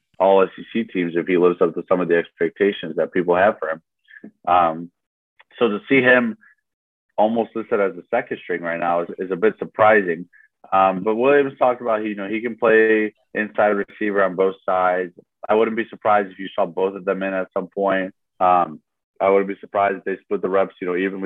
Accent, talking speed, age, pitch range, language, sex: American, 220 wpm, 30-49, 95-110 Hz, English, male